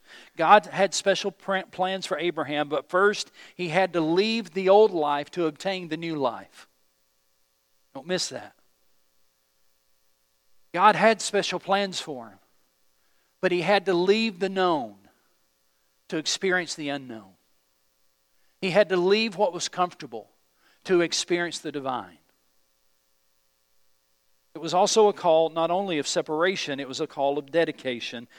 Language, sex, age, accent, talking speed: English, male, 50-69, American, 140 wpm